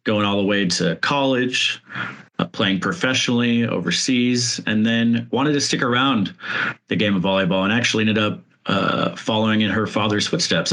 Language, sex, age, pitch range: English, male, 30-49, 100-120 Hz